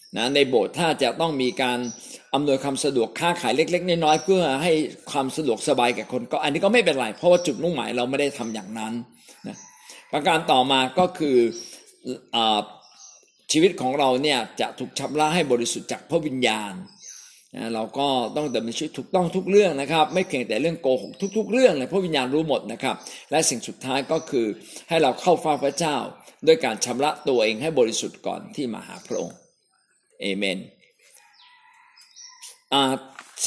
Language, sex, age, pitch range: Thai, male, 60-79, 135-185 Hz